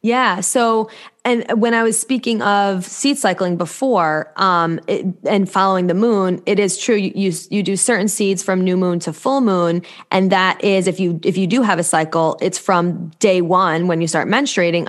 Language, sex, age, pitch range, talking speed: English, female, 20-39, 175-210 Hz, 205 wpm